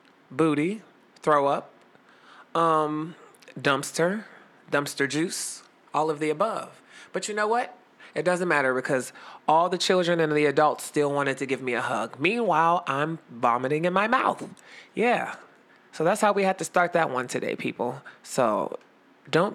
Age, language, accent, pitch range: 20-39, English, American, 140-185 Hz